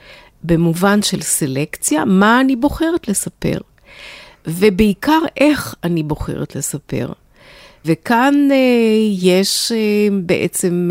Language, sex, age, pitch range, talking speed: Hebrew, female, 50-69, 155-200 Hz, 95 wpm